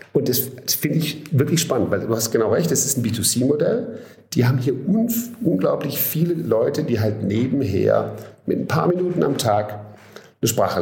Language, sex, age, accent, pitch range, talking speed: German, male, 50-69, German, 105-155 Hz, 175 wpm